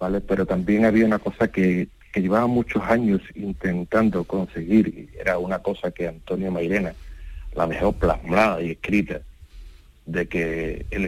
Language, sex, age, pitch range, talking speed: Spanish, male, 40-59, 85-105 Hz, 150 wpm